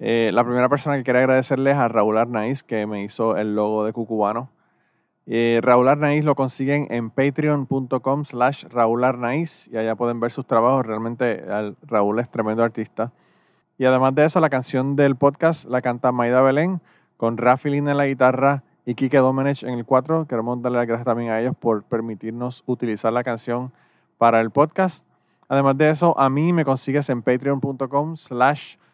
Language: Spanish